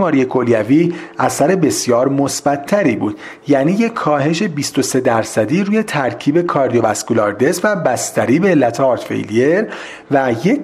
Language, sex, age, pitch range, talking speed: Persian, male, 40-59, 130-185 Hz, 125 wpm